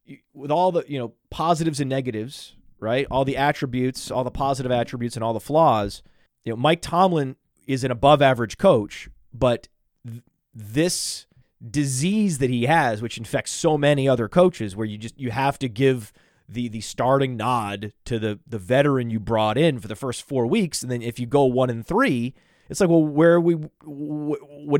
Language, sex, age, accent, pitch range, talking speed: English, male, 30-49, American, 120-160 Hz, 185 wpm